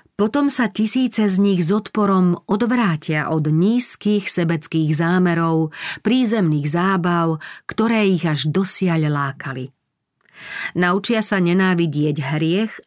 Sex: female